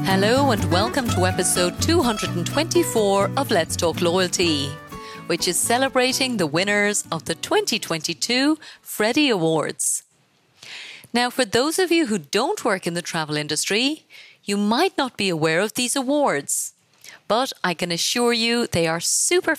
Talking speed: 145 wpm